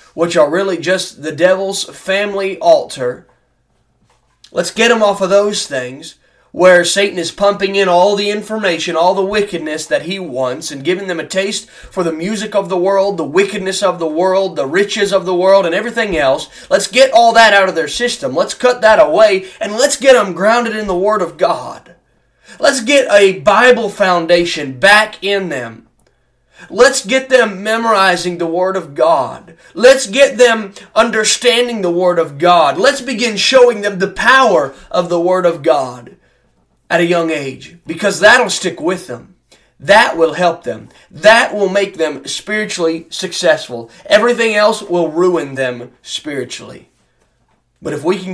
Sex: male